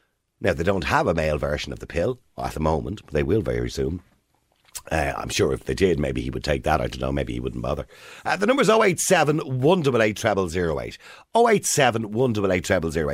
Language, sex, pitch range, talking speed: English, male, 85-140 Hz, 195 wpm